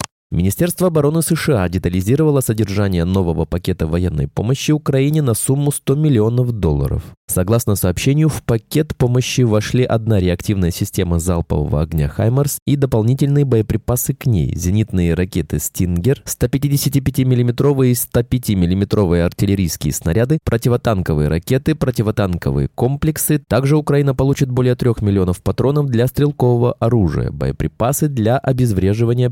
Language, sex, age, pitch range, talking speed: Russian, male, 20-39, 95-135 Hz, 115 wpm